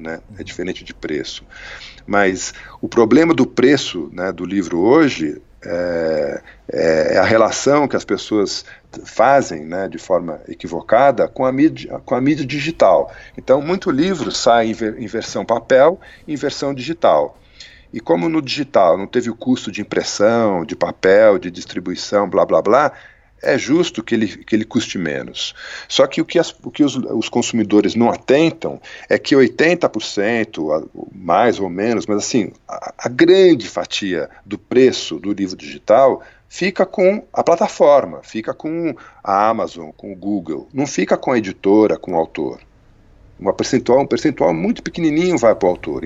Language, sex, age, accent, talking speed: Portuguese, male, 50-69, Brazilian, 165 wpm